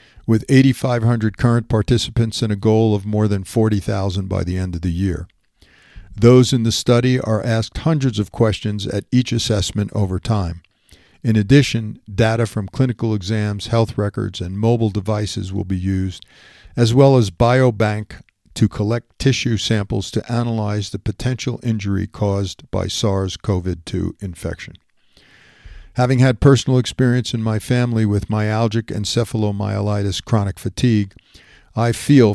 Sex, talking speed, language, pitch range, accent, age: male, 140 wpm, English, 100-120 Hz, American, 50-69